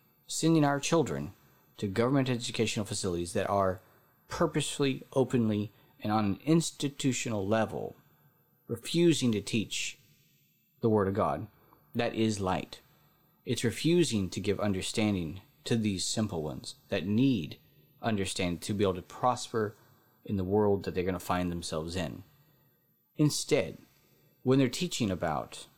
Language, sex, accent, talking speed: English, male, American, 135 wpm